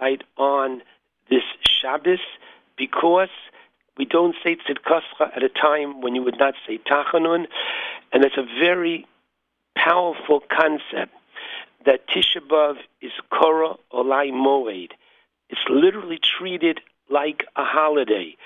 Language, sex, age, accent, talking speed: English, male, 60-79, American, 115 wpm